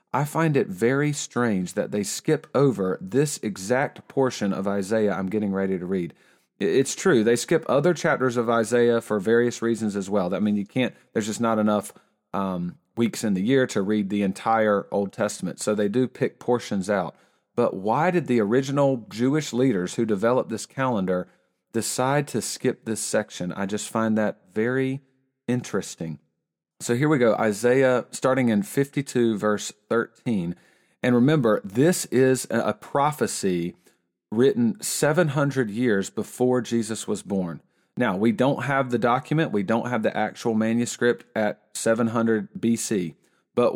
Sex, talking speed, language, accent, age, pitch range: male, 160 wpm, English, American, 40-59, 105-130 Hz